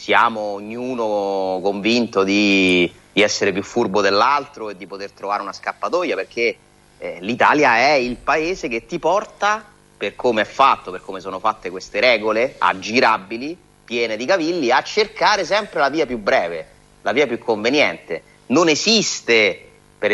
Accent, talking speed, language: native, 155 wpm, Italian